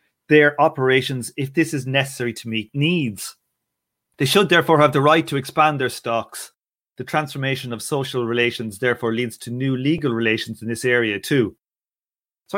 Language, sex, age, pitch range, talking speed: English, male, 30-49, 125-160 Hz, 165 wpm